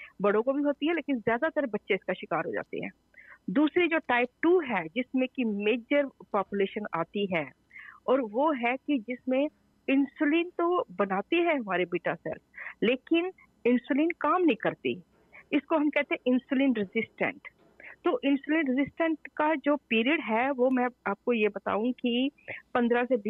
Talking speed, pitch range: 135 wpm, 200-280 Hz